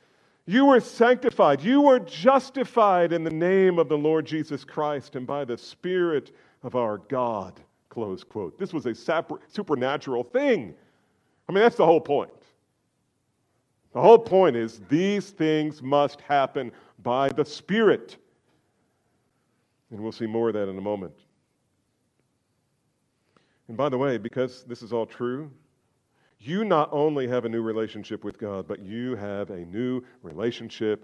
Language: English